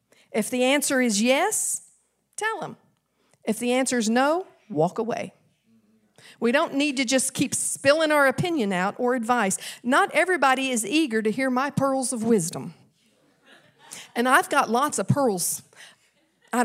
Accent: American